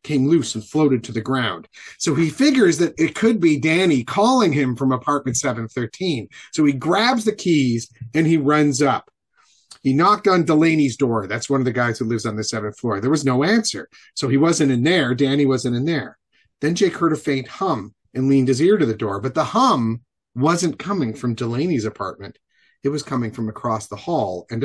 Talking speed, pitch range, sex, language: 210 wpm, 125-175 Hz, male, English